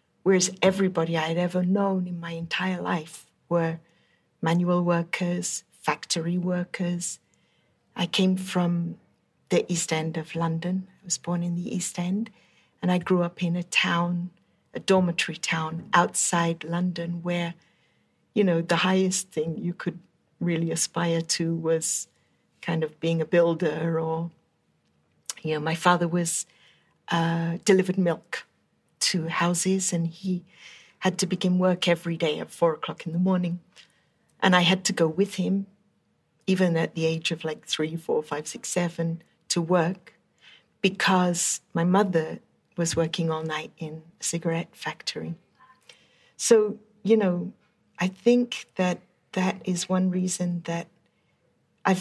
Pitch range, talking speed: 165-190 Hz, 145 wpm